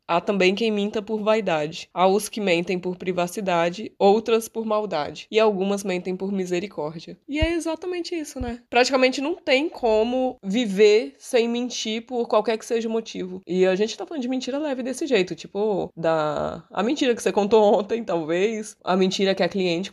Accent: Brazilian